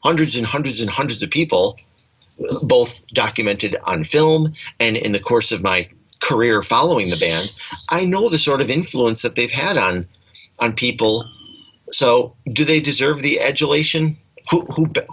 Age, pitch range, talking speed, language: 40-59, 120-160 Hz, 160 wpm, English